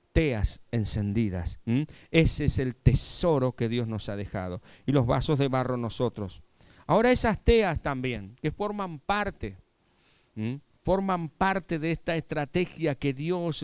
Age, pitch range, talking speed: 50-69, 125-175 Hz, 135 wpm